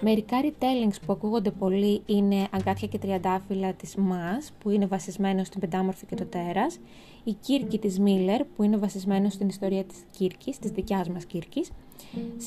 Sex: female